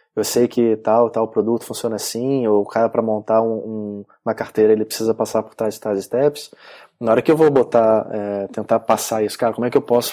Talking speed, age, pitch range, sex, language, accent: 235 wpm, 20-39, 105-125 Hz, male, Portuguese, Brazilian